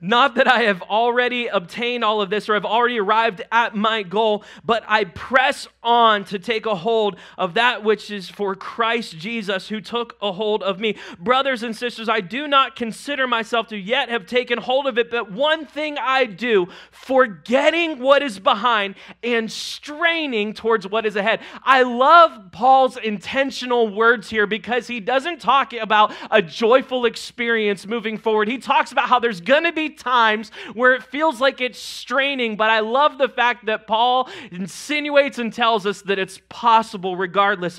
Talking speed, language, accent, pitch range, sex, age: 180 wpm, English, American, 205-245 Hz, male, 30-49